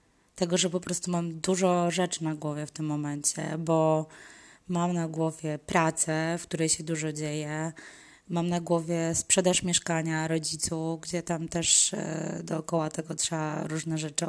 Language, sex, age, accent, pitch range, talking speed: Polish, female, 20-39, native, 165-200 Hz, 150 wpm